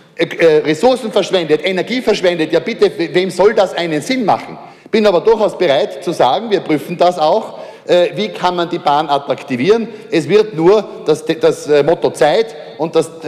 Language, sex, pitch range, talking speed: German, male, 170-210 Hz, 165 wpm